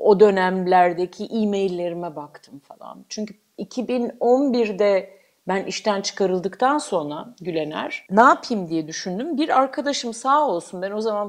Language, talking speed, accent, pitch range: Turkish, 120 wpm, native, 190-245 Hz